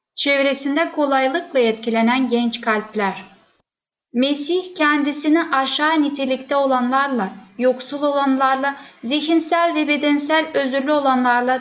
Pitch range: 245-290 Hz